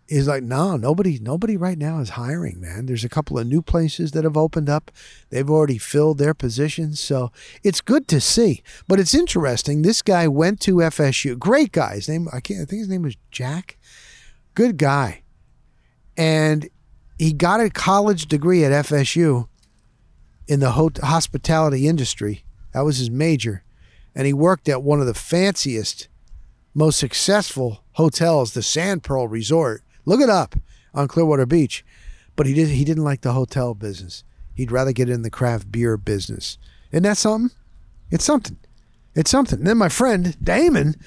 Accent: American